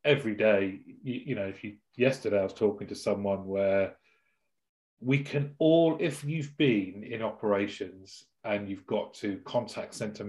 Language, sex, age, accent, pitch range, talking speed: English, male, 30-49, British, 100-135 Hz, 165 wpm